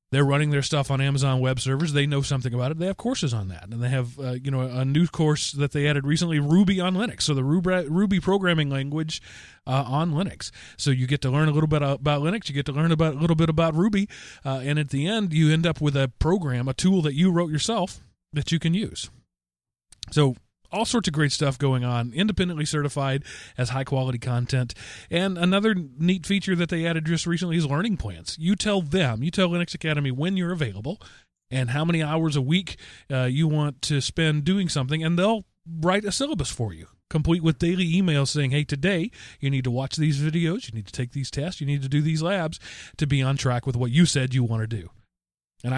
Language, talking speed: English, 230 wpm